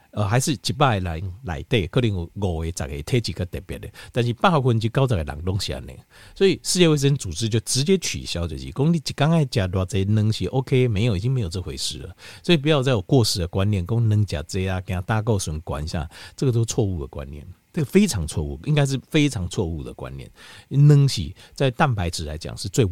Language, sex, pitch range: Chinese, male, 85-125 Hz